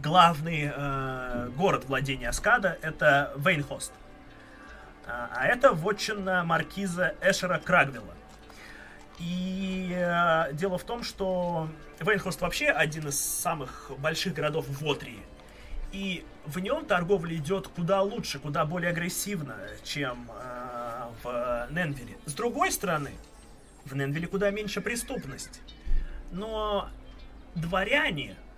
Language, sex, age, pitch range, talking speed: Russian, male, 20-39, 135-185 Hz, 110 wpm